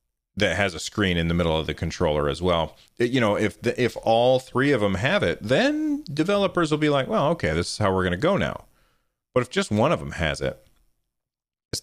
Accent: American